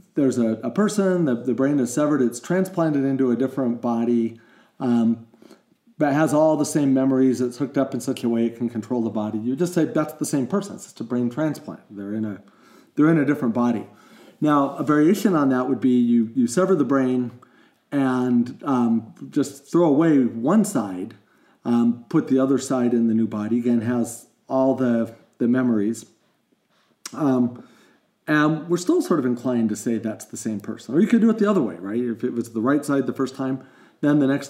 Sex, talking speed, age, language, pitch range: male, 210 wpm, 40-59, English, 120-150 Hz